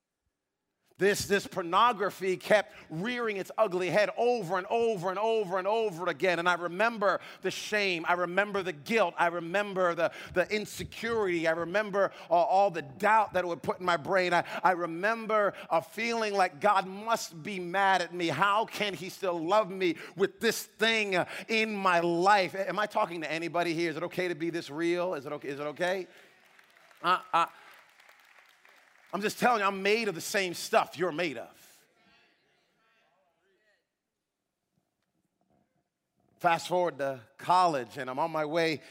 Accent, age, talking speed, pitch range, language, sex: American, 40-59, 165 wpm, 165-200 Hz, English, male